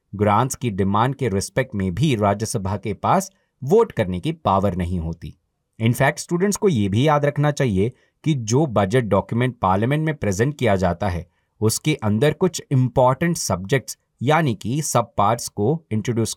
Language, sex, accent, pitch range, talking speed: Hindi, male, native, 105-140 Hz, 165 wpm